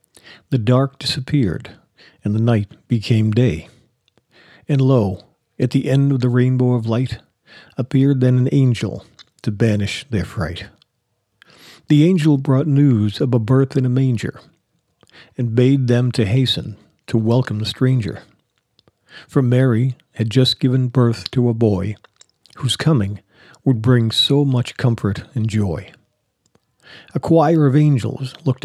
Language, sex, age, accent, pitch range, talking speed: English, male, 50-69, American, 110-135 Hz, 140 wpm